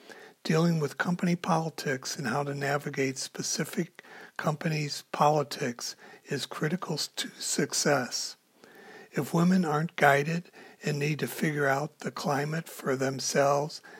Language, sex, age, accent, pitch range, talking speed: English, male, 60-79, American, 135-165 Hz, 120 wpm